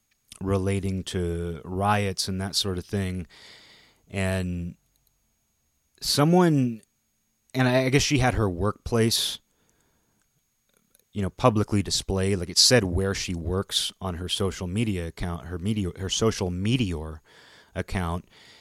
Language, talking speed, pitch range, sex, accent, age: English, 125 wpm, 90-110 Hz, male, American, 30-49